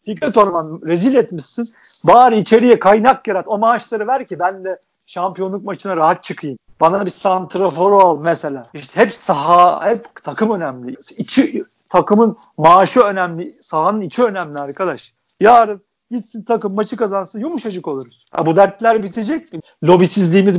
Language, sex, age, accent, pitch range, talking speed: Turkish, male, 50-69, native, 175-225 Hz, 145 wpm